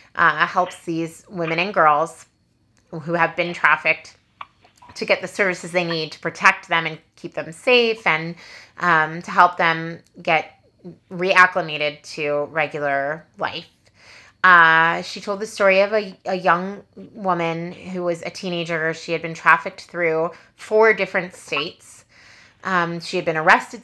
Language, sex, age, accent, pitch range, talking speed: English, female, 30-49, American, 165-195 Hz, 150 wpm